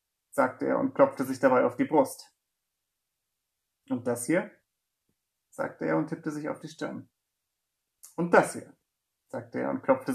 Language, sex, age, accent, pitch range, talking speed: German, male, 30-49, German, 135-195 Hz, 160 wpm